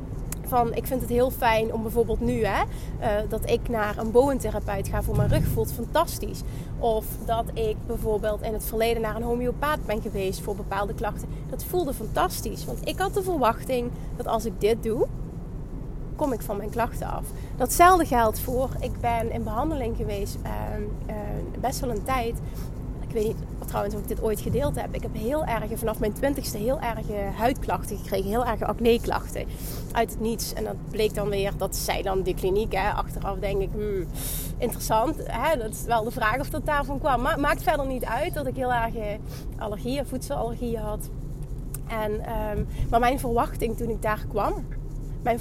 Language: Dutch